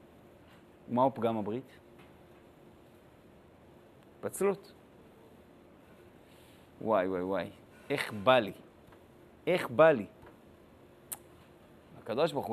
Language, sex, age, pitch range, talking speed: Hebrew, male, 50-69, 145-225 Hz, 65 wpm